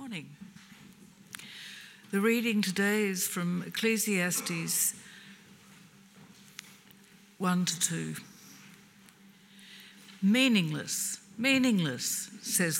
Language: English